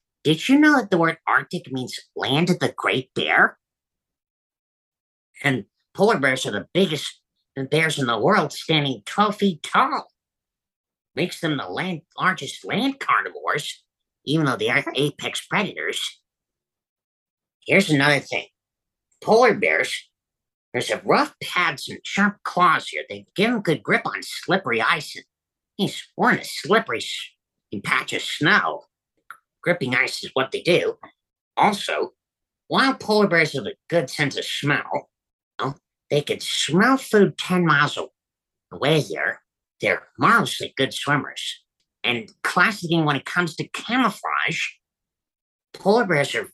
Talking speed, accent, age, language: 140 wpm, American, 50-69, English